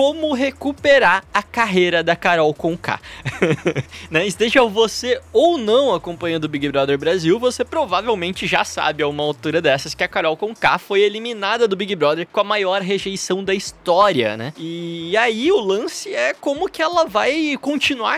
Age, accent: 20-39, Brazilian